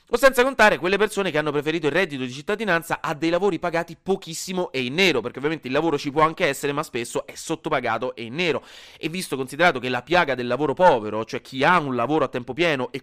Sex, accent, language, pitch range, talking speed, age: male, native, Italian, 125-170 Hz, 245 wpm, 30-49